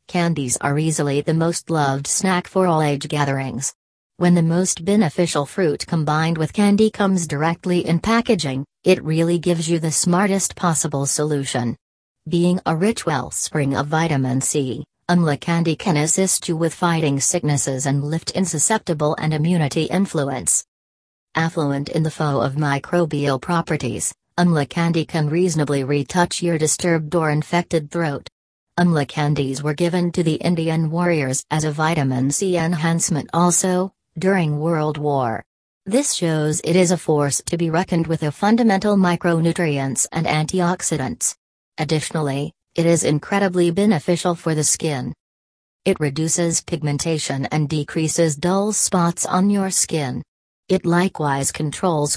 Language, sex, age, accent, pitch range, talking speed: English, female, 40-59, American, 145-175 Hz, 140 wpm